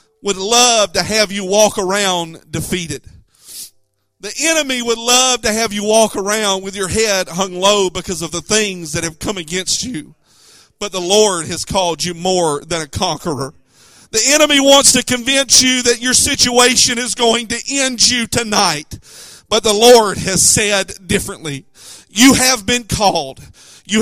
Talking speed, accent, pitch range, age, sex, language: 165 wpm, American, 180-230 Hz, 40-59, male, English